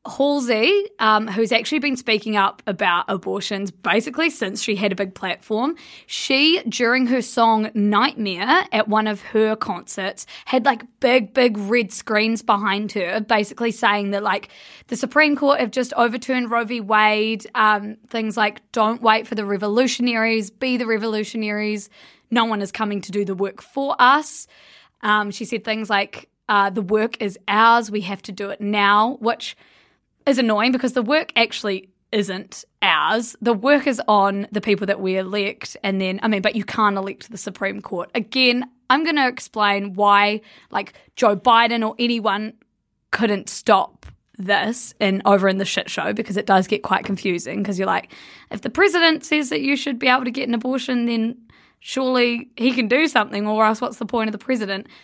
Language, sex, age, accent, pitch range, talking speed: English, female, 20-39, Australian, 205-245 Hz, 185 wpm